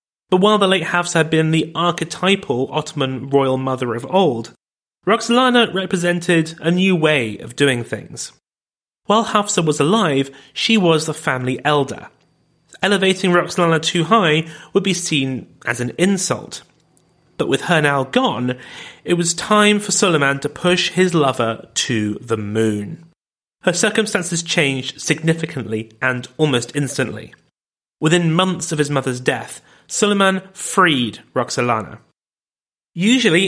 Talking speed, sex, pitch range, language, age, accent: 135 wpm, male, 135-185 Hz, English, 30-49, British